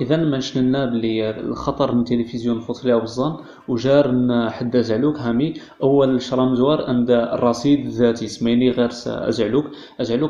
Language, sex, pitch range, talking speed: Arabic, male, 120-135 Hz, 120 wpm